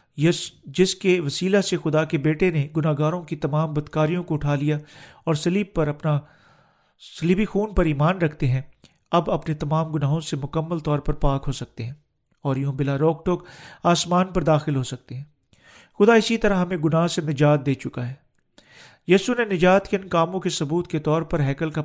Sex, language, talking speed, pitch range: male, Urdu, 195 wpm, 150-180 Hz